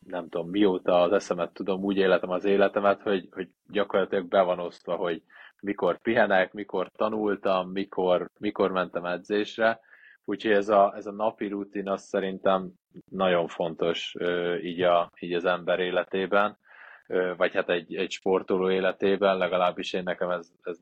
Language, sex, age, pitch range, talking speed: Hungarian, male, 20-39, 90-110 Hz, 160 wpm